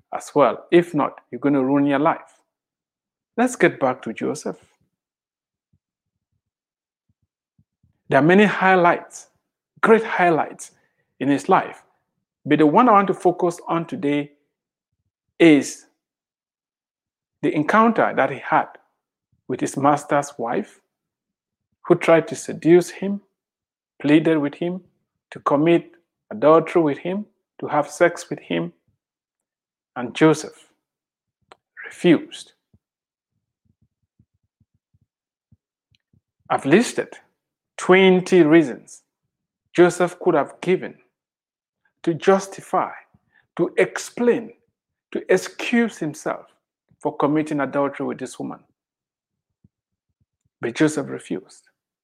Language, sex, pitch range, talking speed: English, male, 145-200 Hz, 100 wpm